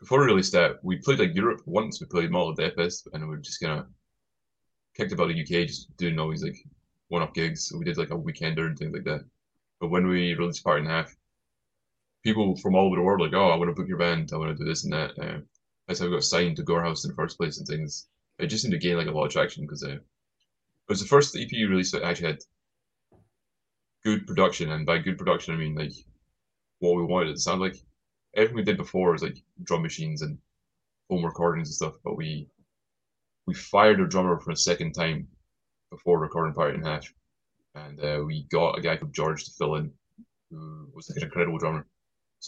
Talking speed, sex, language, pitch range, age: 245 wpm, male, English, 80-95 Hz, 20-39